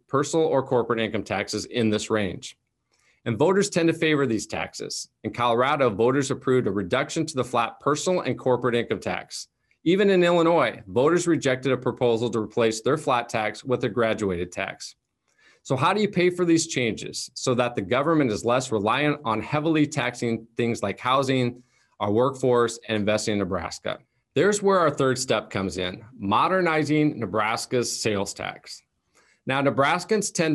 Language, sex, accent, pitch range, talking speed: English, male, American, 110-150 Hz, 170 wpm